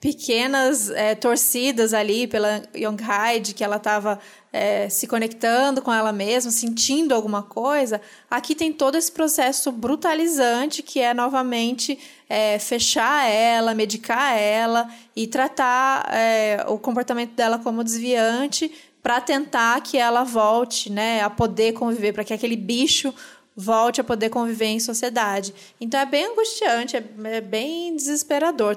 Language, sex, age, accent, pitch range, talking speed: Portuguese, female, 20-39, Brazilian, 215-260 Hz, 130 wpm